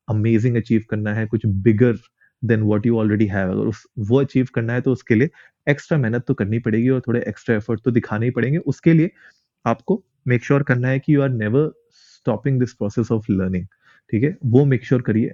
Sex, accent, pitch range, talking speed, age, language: male, native, 110-140 Hz, 160 wpm, 30-49, Hindi